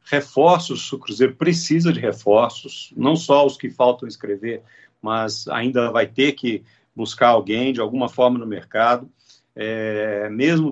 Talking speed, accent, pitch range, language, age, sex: 145 wpm, Brazilian, 125-170 Hz, Portuguese, 50-69, male